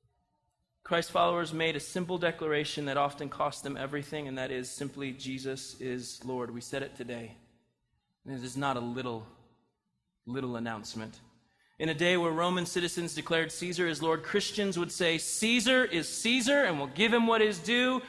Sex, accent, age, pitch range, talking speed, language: male, American, 20-39, 135-225 Hz, 180 wpm, English